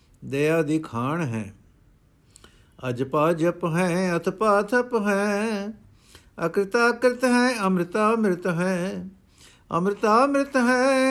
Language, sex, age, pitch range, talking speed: Punjabi, male, 60-79, 140-205 Hz, 95 wpm